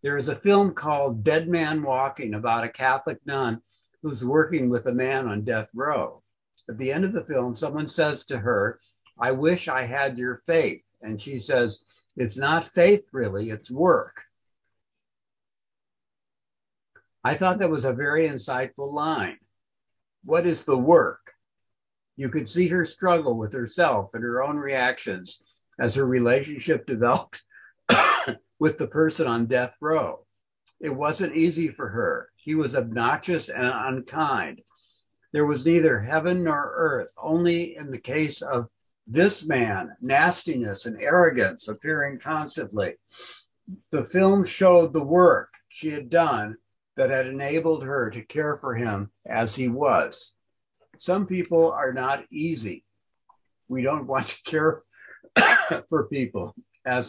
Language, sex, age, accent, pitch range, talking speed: English, male, 60-79, American, 120-165 Hz, 145 wpm